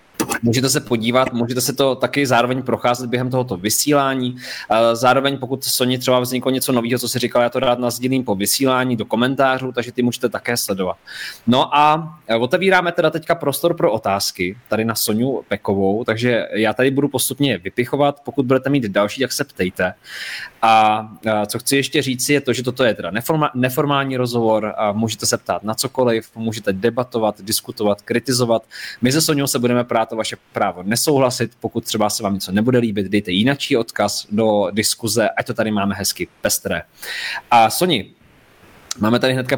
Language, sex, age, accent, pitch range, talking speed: Czech, male, 20-39, native, 110-135 Hz, 175 wpm